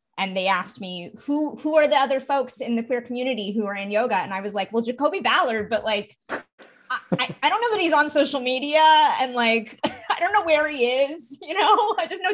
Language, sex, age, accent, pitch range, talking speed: English, female, 20-39, American, 195-275 Hz, 240 wpm